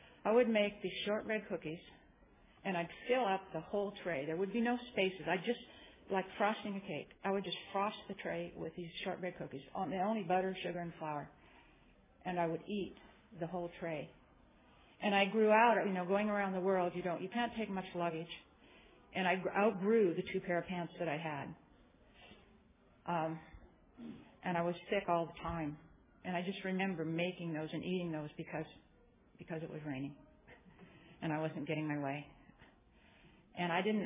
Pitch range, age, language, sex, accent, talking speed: 165-195 Hz, 50-69, English, female, American, 185 wpm